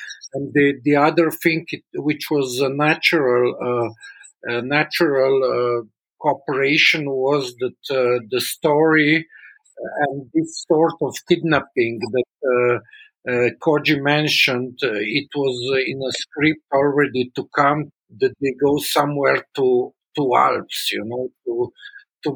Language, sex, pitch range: English, male, 130-155 Hz